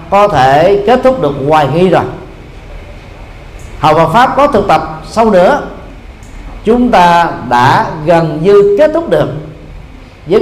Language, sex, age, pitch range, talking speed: Vietnamese, male, 40-59, 120-185 Hz, 145 wpm